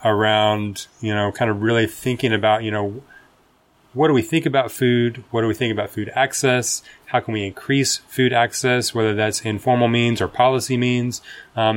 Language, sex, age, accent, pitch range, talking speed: English, male, 20-39, American, 105-120 Hz, 190 wpm